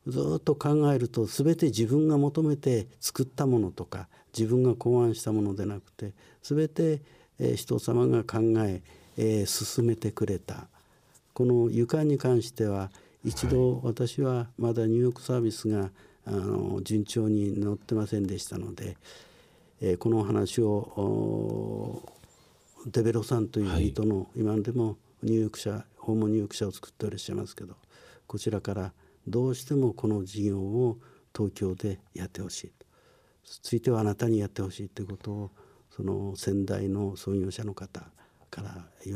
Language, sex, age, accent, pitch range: Japanese, male, 60-79, native, 100-120 Hz